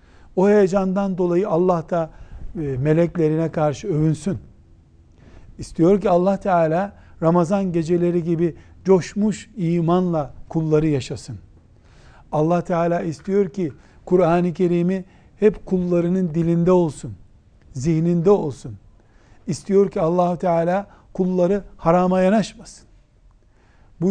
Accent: native